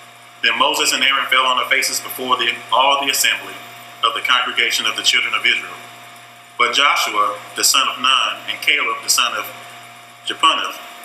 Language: English